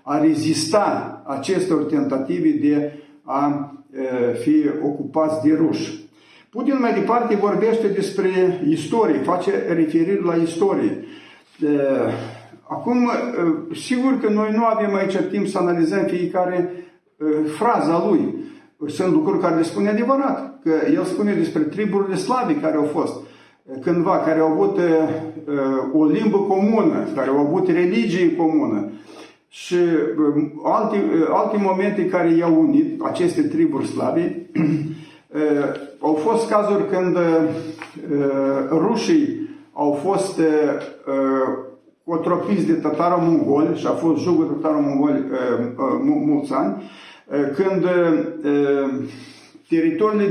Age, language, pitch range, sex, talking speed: 50-69, Romanian, 150-240 Hz, male, 115 wpm